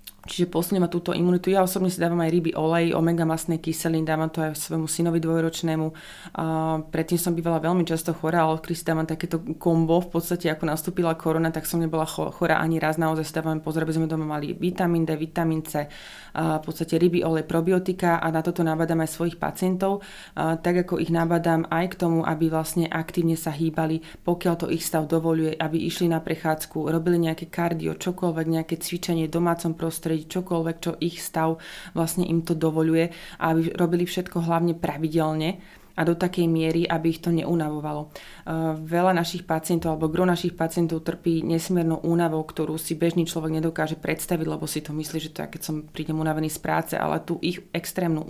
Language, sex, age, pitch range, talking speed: Slovak, female, 20-39, 160-170 Hz, 185 wpm